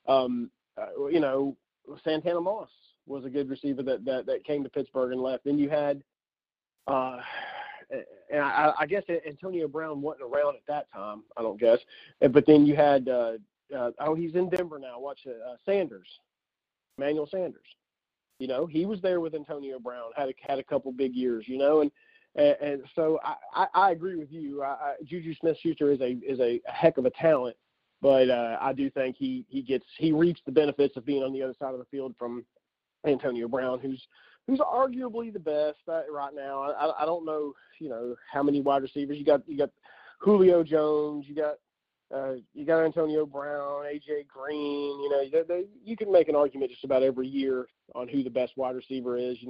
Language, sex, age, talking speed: English, male, 40-59, 205 wpm